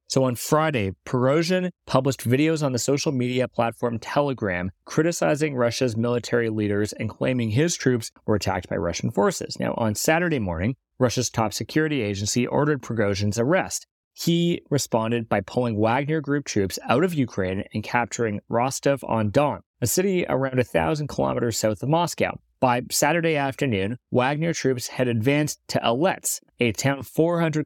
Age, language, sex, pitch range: 30-49, English, male, 115-145 Hz